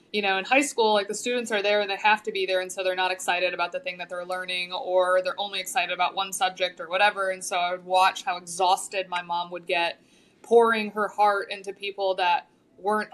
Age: 20-39